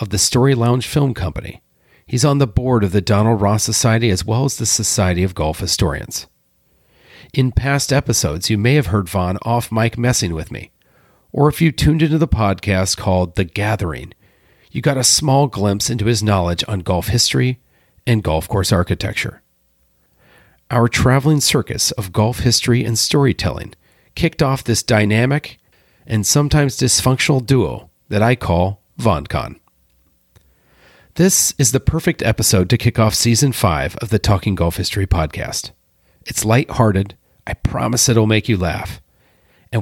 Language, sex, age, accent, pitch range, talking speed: English, male, 40-59, American, 95-130 Hz, 160 wpm